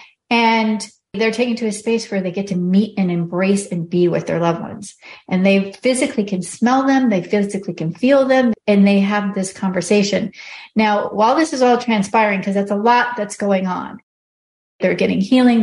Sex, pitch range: female, 190-225 Hz